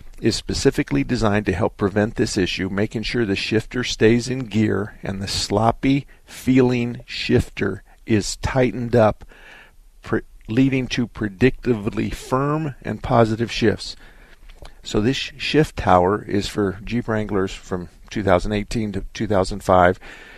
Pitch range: 95-115 Hz